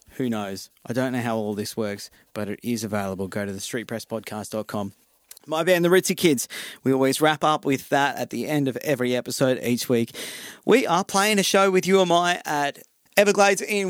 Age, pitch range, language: 30-49, 120-165 Hz, English